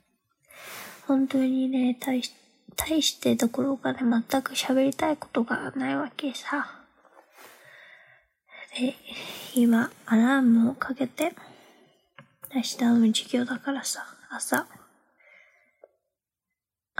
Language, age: Japanese, 20-39